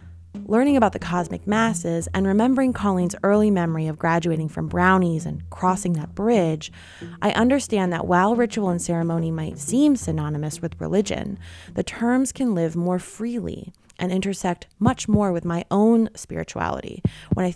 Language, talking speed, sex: English, 155 wpm, female